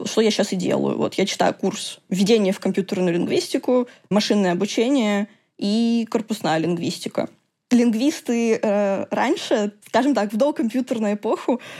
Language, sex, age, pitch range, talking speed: Russian, female, 20-39, 205-240 Hz, 130 wpm